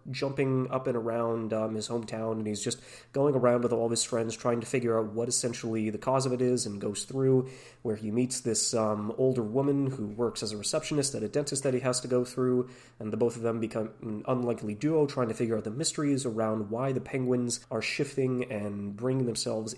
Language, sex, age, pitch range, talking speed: English, male, 20-39, 110-130 Hz, 230 wpm